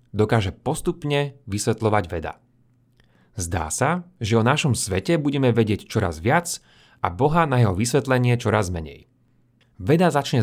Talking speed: 130 wpm